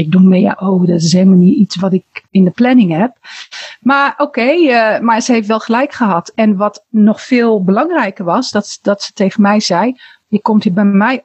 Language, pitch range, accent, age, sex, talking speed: Dutch, 195-255 Hz, Dutch, 40-59, female, 230 wpm